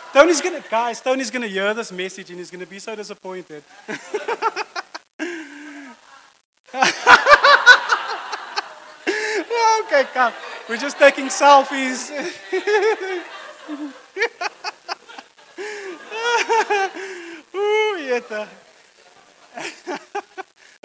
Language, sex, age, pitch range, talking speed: English, male, 20-39, 190-295 Hz, 60 wpm